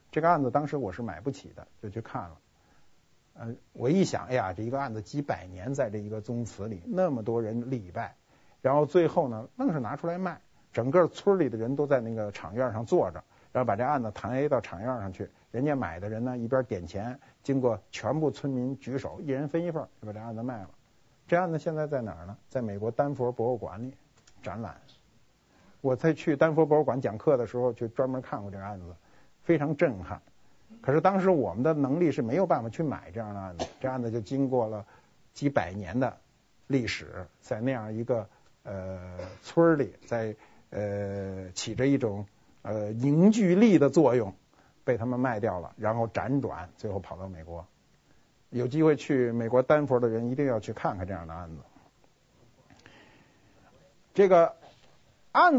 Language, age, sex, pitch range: Chinese, 50-69, male, 105-145 Hz